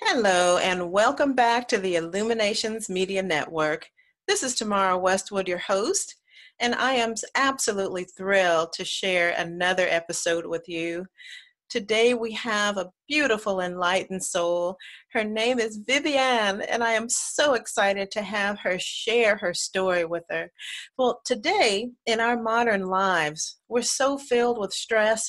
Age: 40-59